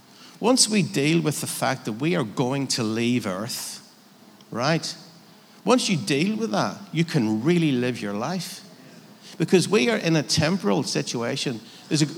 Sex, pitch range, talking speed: male, 125-190 Hz, 165 wpm